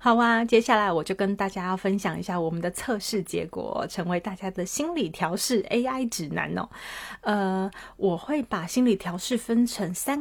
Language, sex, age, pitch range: Chinese, female, 30-49, 180-230 Hz